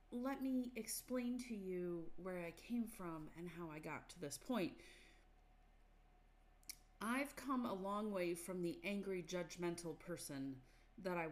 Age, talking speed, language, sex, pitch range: 30-49, 150 wpm, English, female, 170-225 Hz